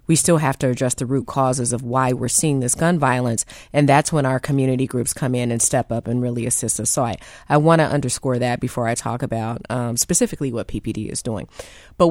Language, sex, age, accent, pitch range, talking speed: English, female, 30-49, American, 120-155 Hz, 235 wpm